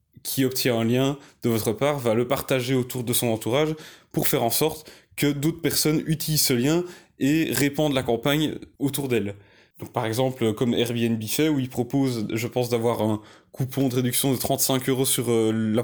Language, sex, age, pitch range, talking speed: French, male, 20-39, 120-145 Hz, 195 wpm